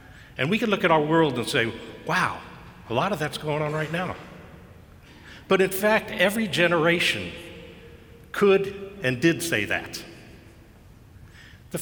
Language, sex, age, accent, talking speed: English, male, 60-79, American, 145 wpm